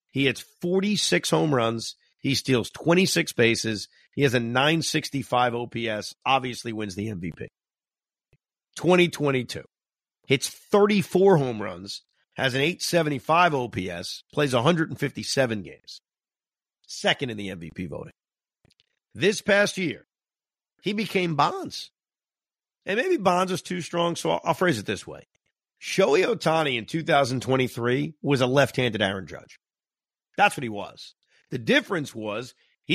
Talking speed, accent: 125 wpm, American